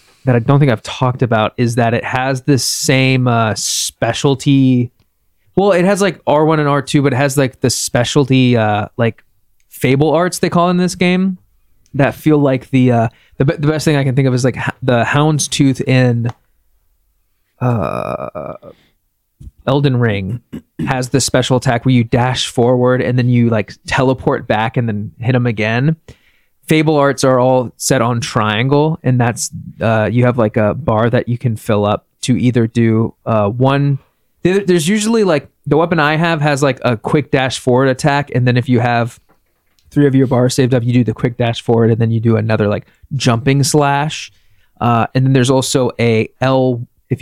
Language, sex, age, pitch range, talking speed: English, male, 20-39, 115-140 Hz, 190 wpm